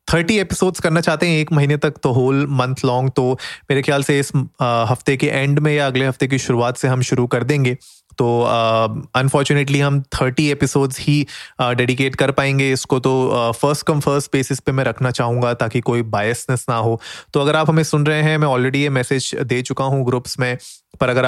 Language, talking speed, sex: Hindi, 210 wpm, male